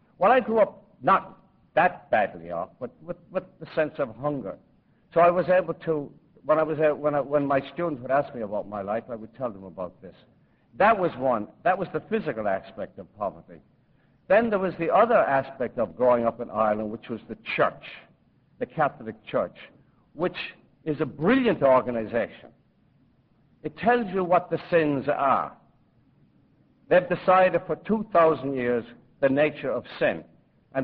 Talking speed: 175 wpm